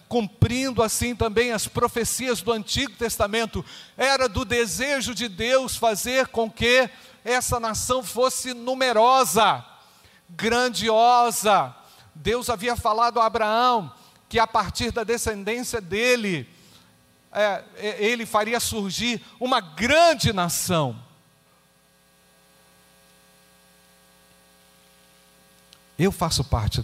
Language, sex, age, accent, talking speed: Portuguese, male, 50-69, Brazilian, 90 wpm